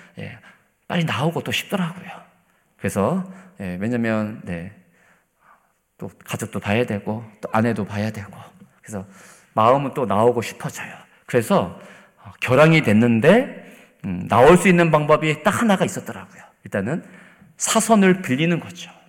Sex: male